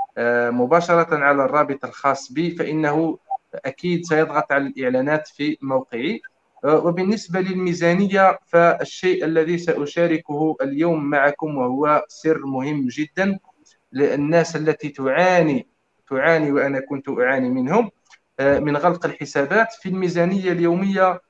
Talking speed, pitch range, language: 105 wpm, 140-175 Hz, Arabic